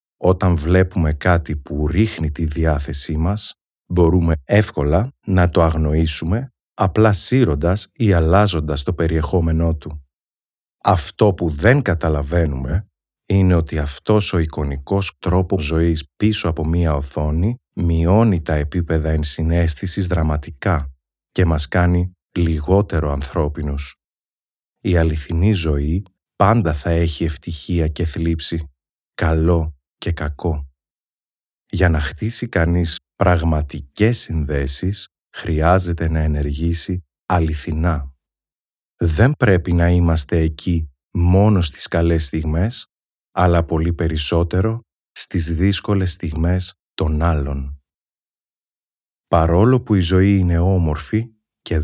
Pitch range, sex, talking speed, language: 75-95 Hz, male, 105 wpm, Greek